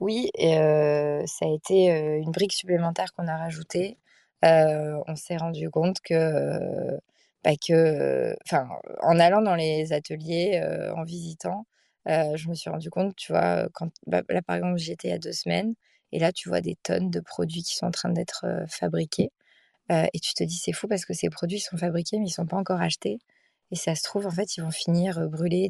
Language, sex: French, female